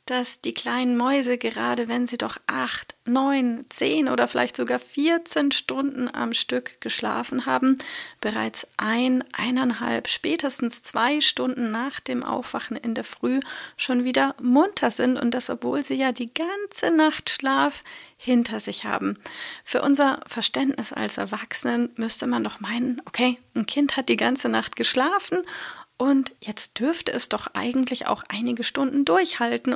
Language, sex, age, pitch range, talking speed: German, female, 30-49, 235-280 Hz, 150 wpm